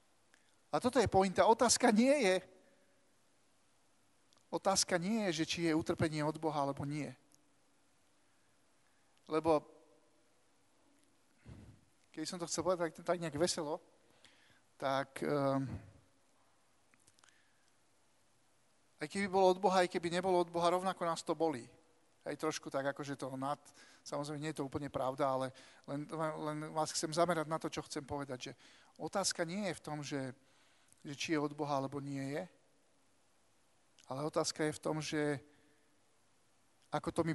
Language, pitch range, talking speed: Slovak, 145-175 Hz, 150 wpm